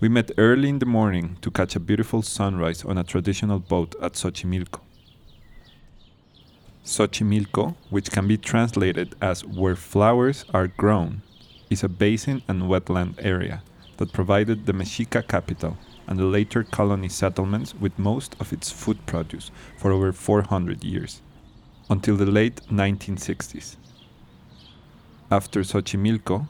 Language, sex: English, male